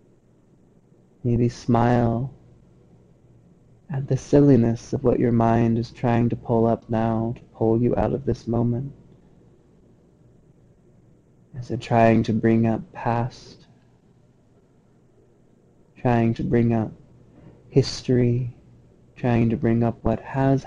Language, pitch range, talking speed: English, 115-125 Hz, 115 wpm